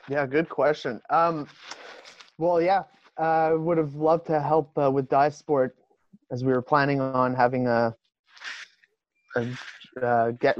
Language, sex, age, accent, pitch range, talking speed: English, male, 30-49, American, 115-140 Hz, 155 wpm